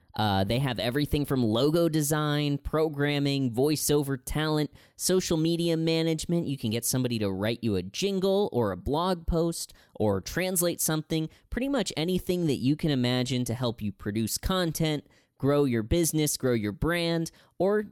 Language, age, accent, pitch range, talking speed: English, 20-39, American, 105-155 Hz, 160 wpm